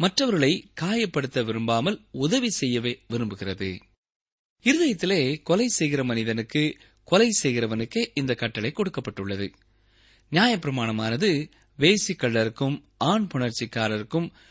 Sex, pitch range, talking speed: male, 110-175 Hz, 85 wpm